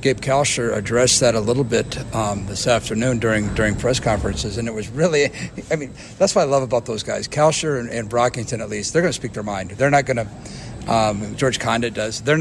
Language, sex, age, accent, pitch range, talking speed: English, male, 50-69, American, 115-140 Hz, 230 wpm